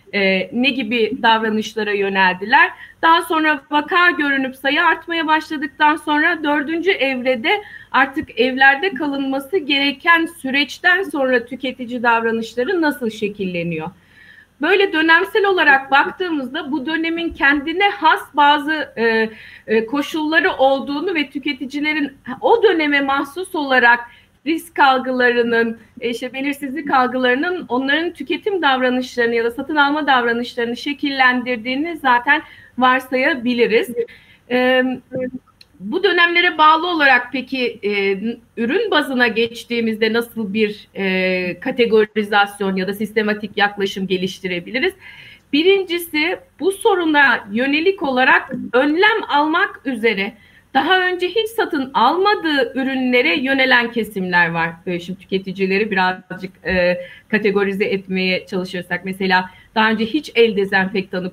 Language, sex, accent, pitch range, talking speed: Turkish, female, native, 215-300 Hz, 105 wpm